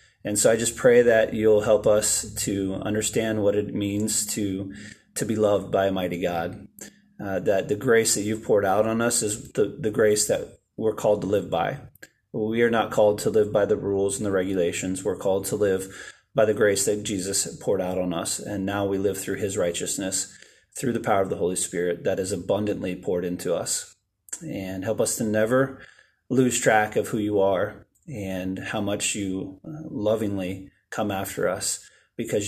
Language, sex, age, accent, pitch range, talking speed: English, male, 30-49, American, 95-110 Hz, 200 wpm